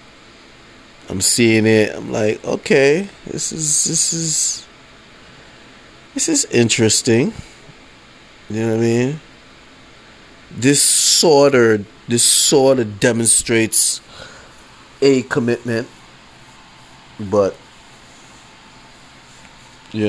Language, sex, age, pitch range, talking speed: English, male, 30-49, 90-120 Hz, 85 wpm